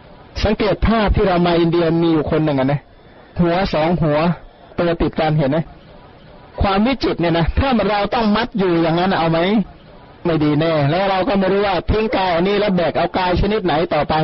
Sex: male